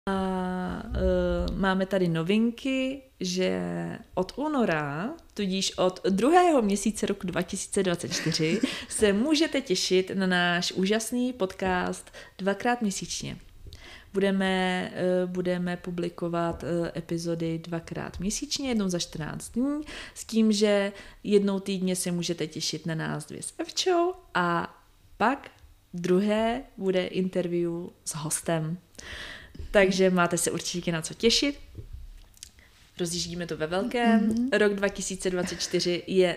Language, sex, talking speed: Czech, female, 110 wpm